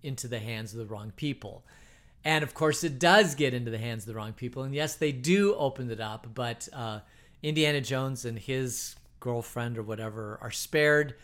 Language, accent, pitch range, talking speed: English, American, 115-150 Hz, 205 wpm